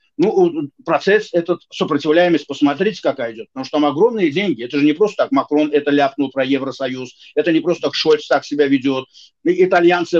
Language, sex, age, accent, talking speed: Ukrainian, male, 50-69, native, 190 wpm